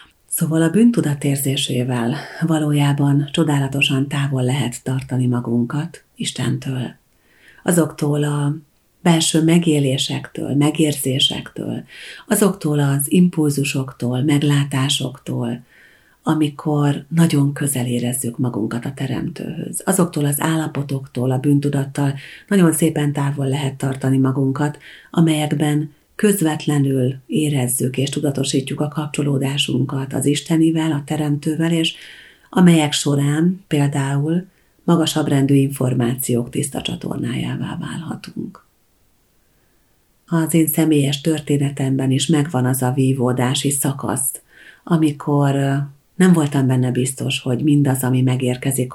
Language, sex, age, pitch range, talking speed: Hungarian, female, 40-59, 130-155 Hz, 95 wpm